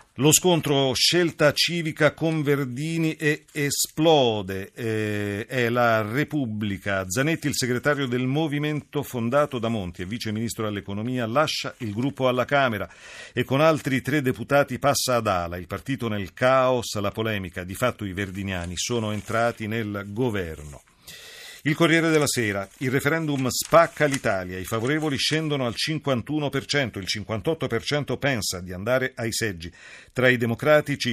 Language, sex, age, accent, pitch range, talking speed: Italian, male, 40-59, native, 110-145 Hz, 145 wpm